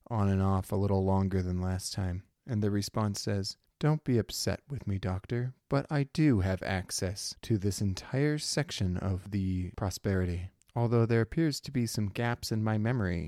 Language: English